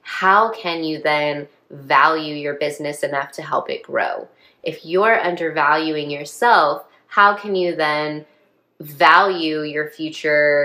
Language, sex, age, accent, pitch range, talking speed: English, female, 20-39, American, 150-180 Hz, 130 wpm